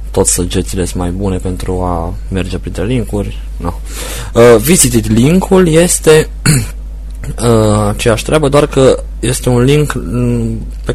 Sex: male